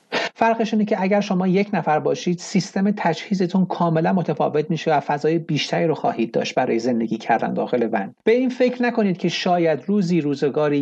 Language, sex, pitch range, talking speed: Persian, male, 150-205 Hz, 175 wpm